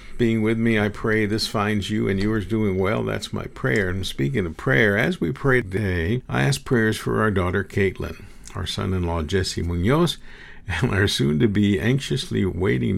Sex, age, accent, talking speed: male, 50-69, American, 190 wpm